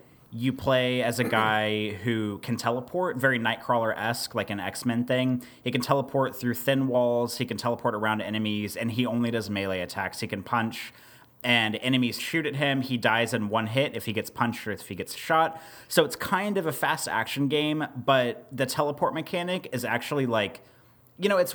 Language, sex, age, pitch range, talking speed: English, male, 30-49, 100-125 Hz, 200 wpm